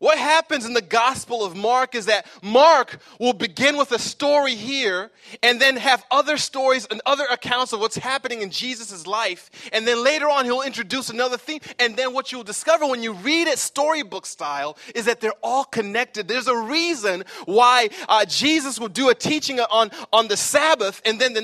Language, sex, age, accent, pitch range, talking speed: English, male, 30-49, American, 220-275 Hz, 200 wpm